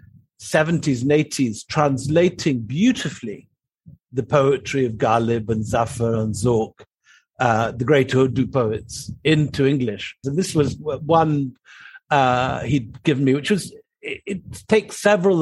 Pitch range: 120-155 Hz